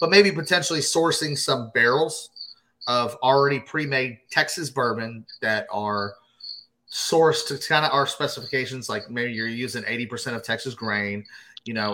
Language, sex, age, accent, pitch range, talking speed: English, male, 30-49, American, 115-145 Hz, 145 wpm